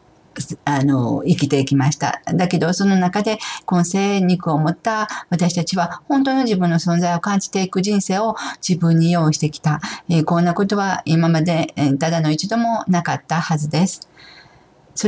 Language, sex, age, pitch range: Japanese, female, 50-69, 155-195 Hz